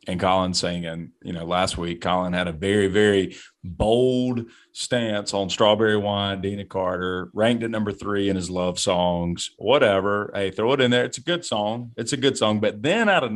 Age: 30-49